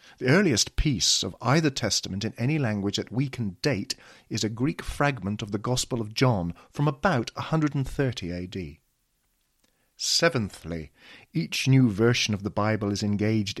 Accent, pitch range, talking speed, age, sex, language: British, 105-140 Hz, 155 wpm, 40-59, male, English